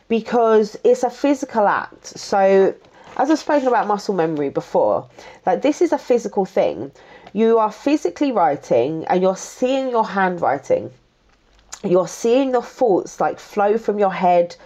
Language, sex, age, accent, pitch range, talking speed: English, female, 30-49, British, 175-235 Hz, 150 wpm